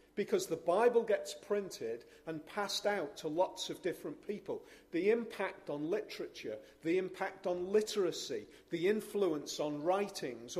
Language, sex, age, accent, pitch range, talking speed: English, male, 40-59, British, 160-220 Hz, 140 wpm